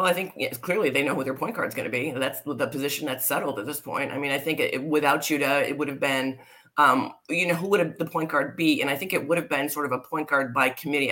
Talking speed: 320 wpm